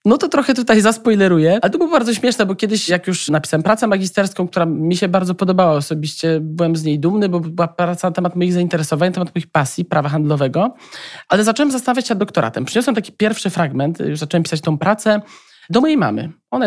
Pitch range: 170-210 Hz